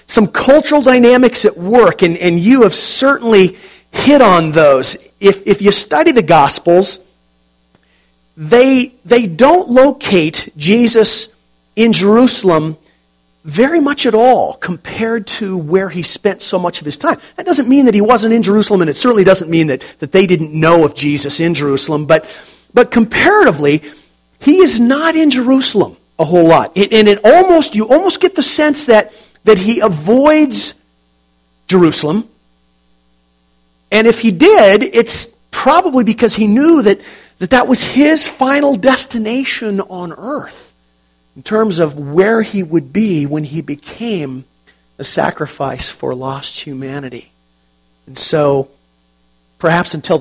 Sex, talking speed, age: male, 150 wpm, 40-59